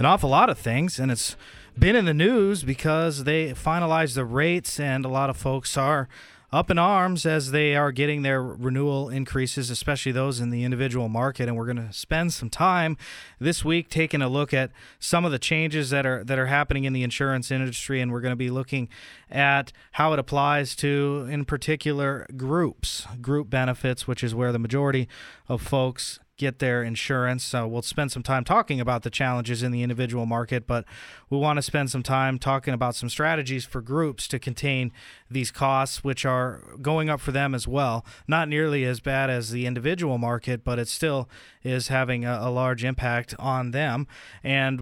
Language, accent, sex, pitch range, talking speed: English, American, male, 125-145 Hz, 195 wpm